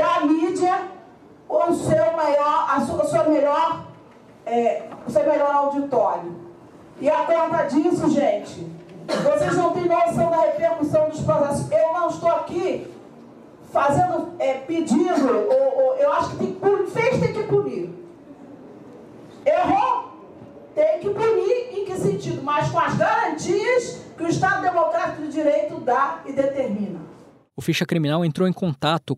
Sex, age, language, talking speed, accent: female, 40-59, Portuguese, 150 wpm, Brazilian